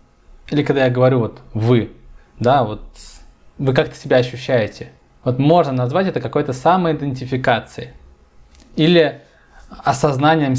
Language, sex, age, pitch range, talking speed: Russian, male, 20-39, 110-150 Hz, 115 wpm